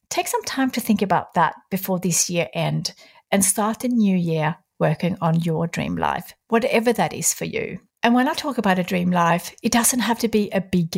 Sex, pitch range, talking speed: female, 170-215 Hz, 225 wpm